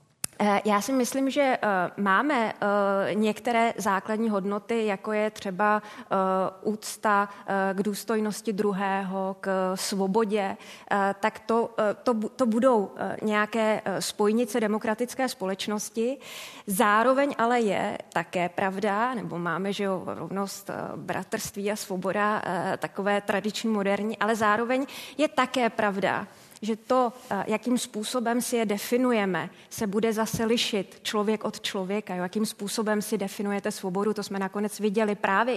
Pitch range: 200-230 Hz